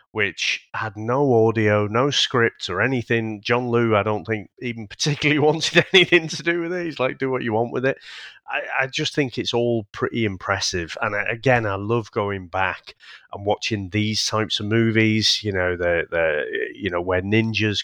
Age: 30-49